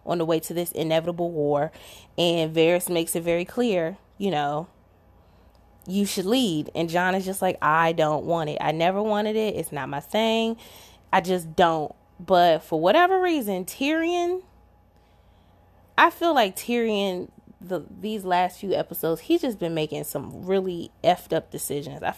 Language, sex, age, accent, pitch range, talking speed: English, female, 20-39, American, 160-200 Hz, 170 wpm